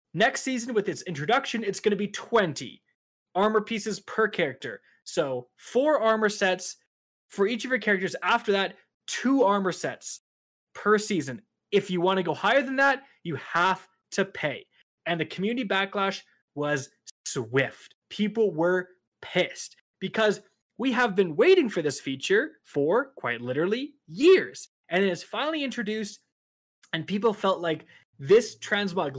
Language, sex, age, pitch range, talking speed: English, male, 20-39, 185-240 Hz, 150 wpm